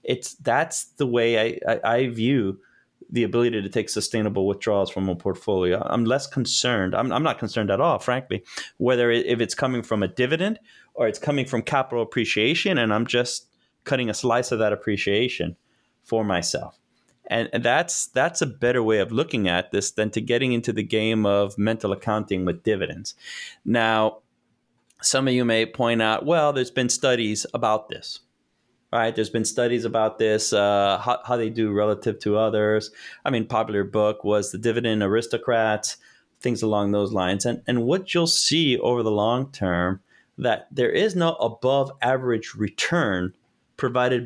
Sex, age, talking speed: male, 30-49, 175 wpm